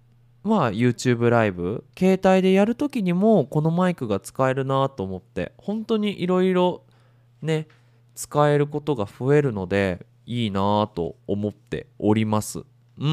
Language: Japanese